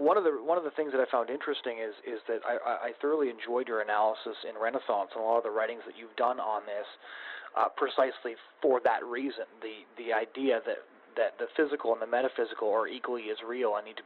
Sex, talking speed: male, 235 wpm